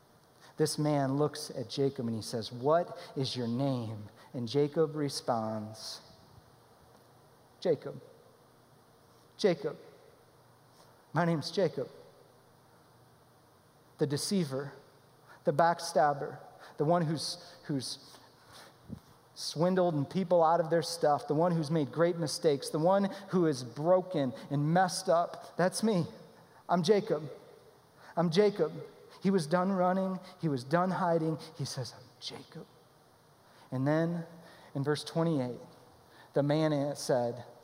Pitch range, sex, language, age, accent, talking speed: 130-170 Hz, male, English, 40-59, American, 120 wpm